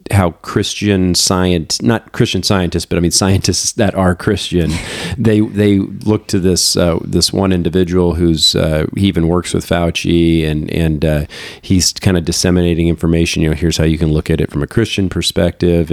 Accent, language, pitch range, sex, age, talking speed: American, English, 85-105 Hz, male, 40-59, 190 wpm